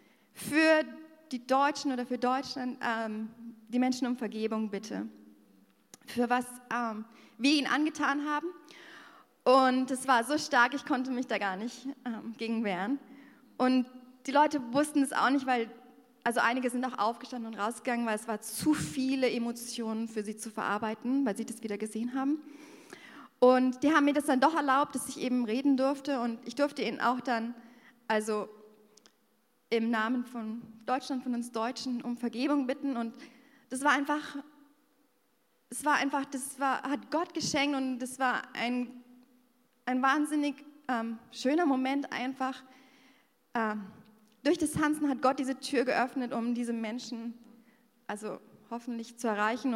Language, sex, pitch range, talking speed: German, female, 230-275 Hz, 160 wpm